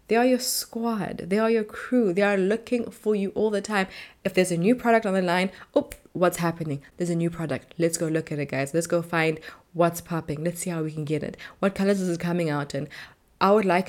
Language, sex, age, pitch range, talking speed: English, female, 20-39, 160-220 Hz, 255 wpm